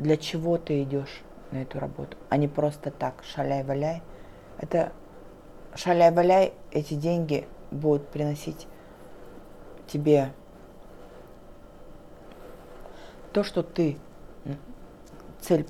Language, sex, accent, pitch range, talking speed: Russian, female, native, 145-175 Hz, 90 wpm